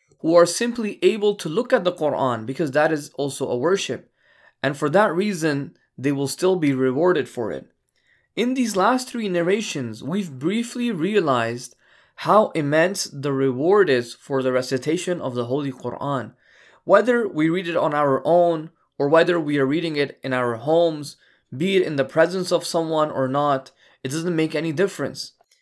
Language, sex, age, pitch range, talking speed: English, male, 20-39, 140-185 Hz, 180 wpm